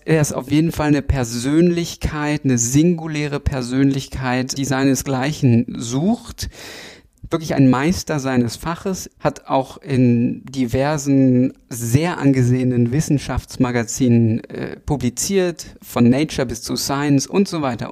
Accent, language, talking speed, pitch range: German, German, 115 wpm, 125-150 Hz